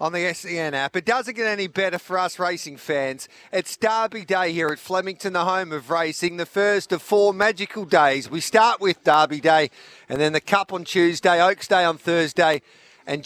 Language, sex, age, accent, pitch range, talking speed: English, male, 40-59, Australian, 160-200 Hz, 205 wpm